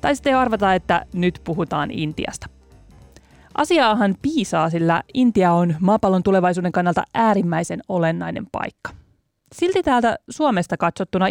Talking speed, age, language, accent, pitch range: 115 wpm, 30-49, Finnish, native, 170-225 Hz